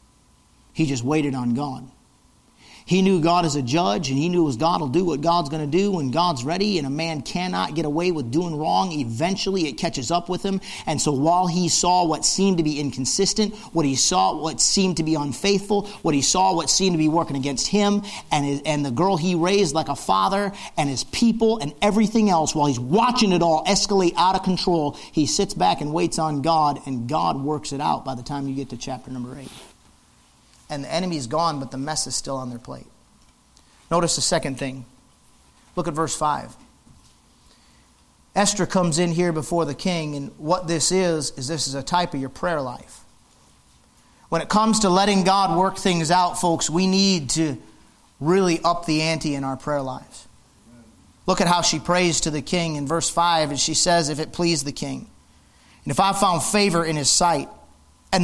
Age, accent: 50-69, American